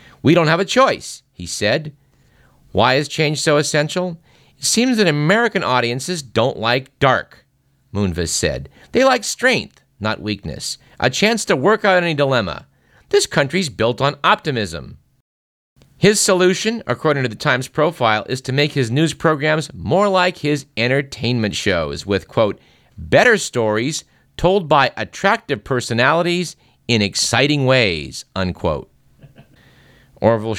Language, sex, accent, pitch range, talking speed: English, male, American, 110-155 Hz, 135 wpm